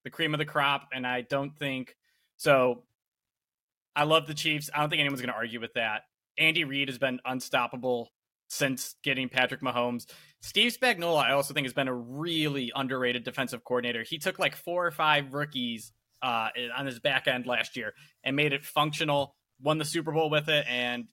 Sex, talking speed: male, 195 wpm